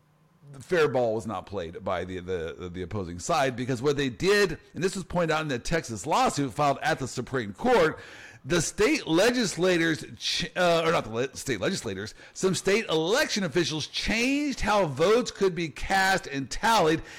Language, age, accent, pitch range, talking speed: English, 50-69, American, 130-170 Hz, 180 wpm